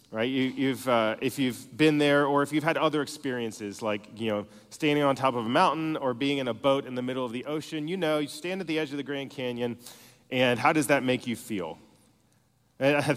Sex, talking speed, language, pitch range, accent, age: male, 240 wpm, English, 115-150 Hz, American, 30-49